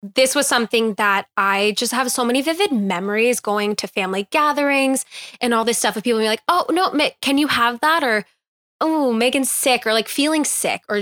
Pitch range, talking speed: 210-260 Hz, 210 wpm